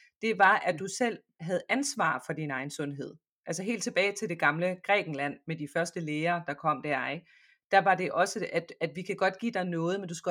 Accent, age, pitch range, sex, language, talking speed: native, 30-49, 150-195 Hz, female, Danish, 240 wpm